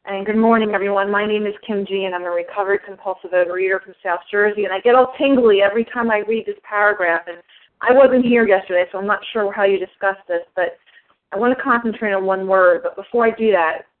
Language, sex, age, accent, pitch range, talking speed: English, female, 30-49, American, 195-250 Hz, 235 wpm